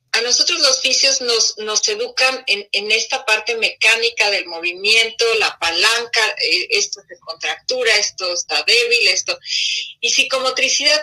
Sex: female